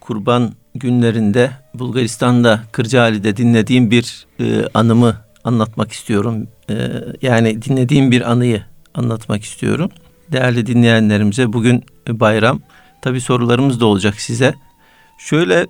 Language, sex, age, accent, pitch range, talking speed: Turkish, male, 50-69, native, 110-130 Hz, 105 wpm